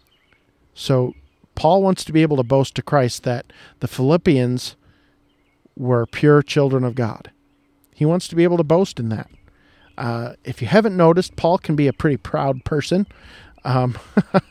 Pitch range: 125-160 Hz